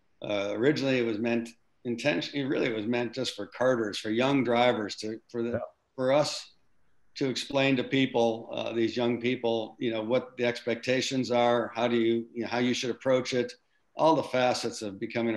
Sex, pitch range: male, 110-125 Hz